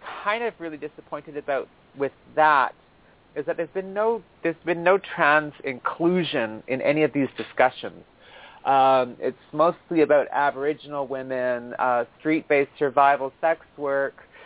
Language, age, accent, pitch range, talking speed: English, 30-49, American, 130-155 Hz, 135 wpm